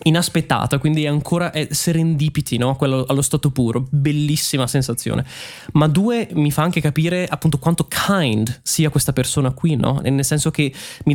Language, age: Italian, 20-39